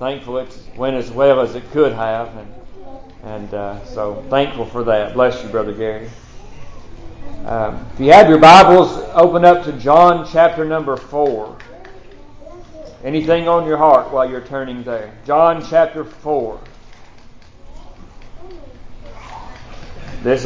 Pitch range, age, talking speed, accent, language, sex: 125-160 Hz, 40-59, 130 wpm, American, English, male